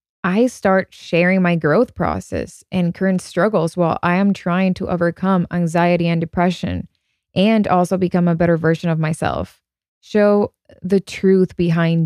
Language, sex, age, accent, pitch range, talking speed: English, female, 20-39, American, 165-190 Hz, 150 wpm